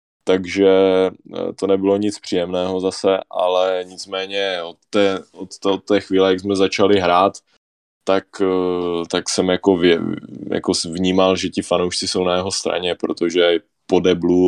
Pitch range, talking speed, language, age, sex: 90-95 Hz, 150 wpm, Czech, 20-39, male